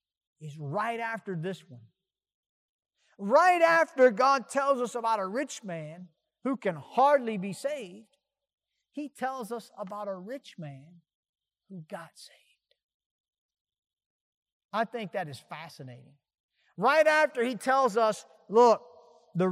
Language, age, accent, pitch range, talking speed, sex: English, 50-69, American, 160-235 Hz, 125 wpm, male